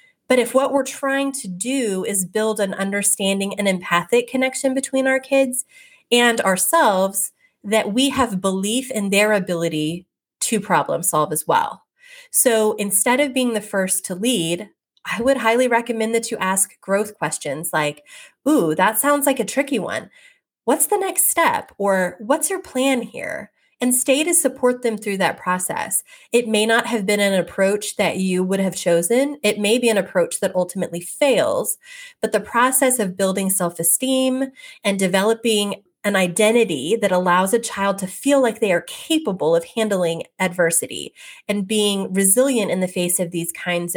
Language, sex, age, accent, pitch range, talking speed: English, female, 30-49, American, 185-260 Hz, 170 wpm